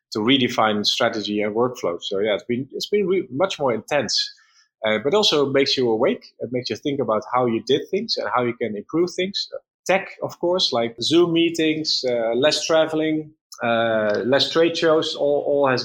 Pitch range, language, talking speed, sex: 120-155 Hz, English, 195 wpm, male